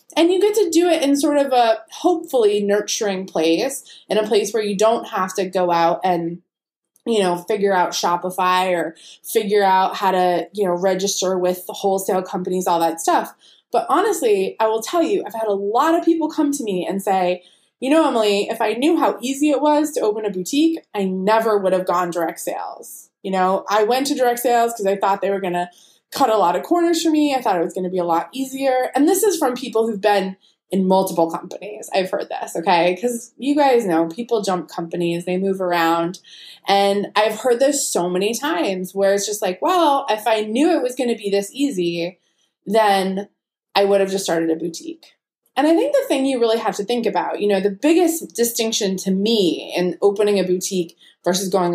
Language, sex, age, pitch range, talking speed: English, female, 20-39, 185-255 Hz, 220 wpm